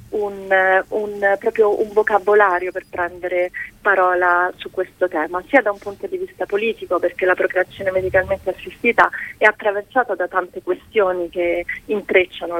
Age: 30-49